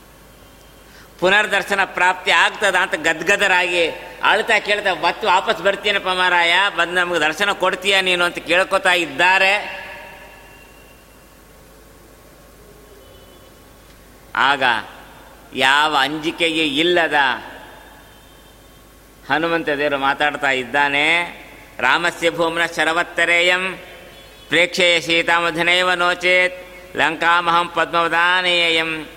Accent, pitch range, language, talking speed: native, 165-210 Hz, Kannada, 75 wpm